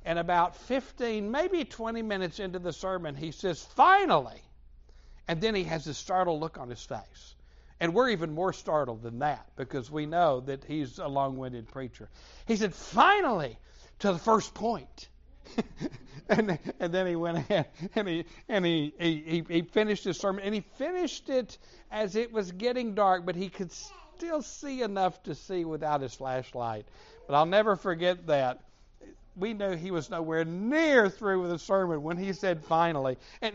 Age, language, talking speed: 60-79, English, 175 wpm